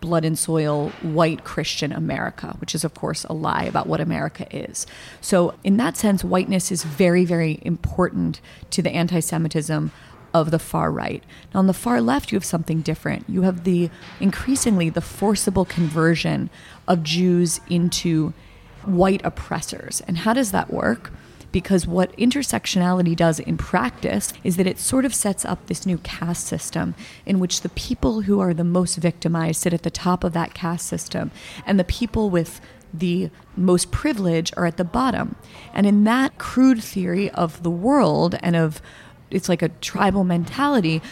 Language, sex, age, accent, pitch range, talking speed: English, female, 30-49, American, 165-200 Hz, 170 wpm